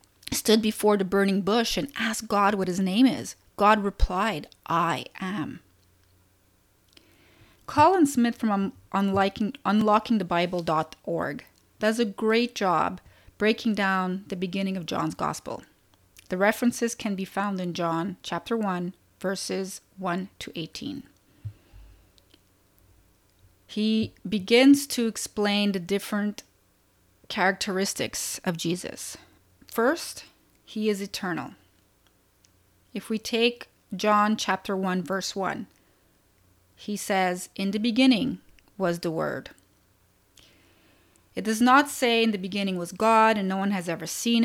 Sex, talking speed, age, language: female, 120 wpm, 30-49, English